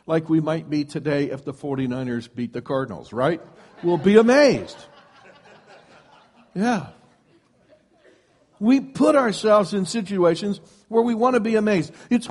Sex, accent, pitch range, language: male, American, 155-220 Hz, English